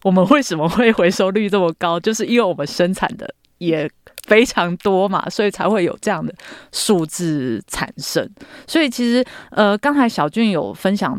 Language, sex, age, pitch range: Chinese, female, 20-39, 165-210 Hz